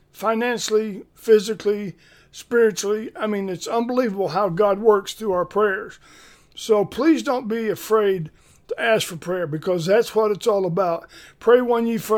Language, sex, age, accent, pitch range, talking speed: English, male, 50-69, American, 185-225 Hz, 155 wpm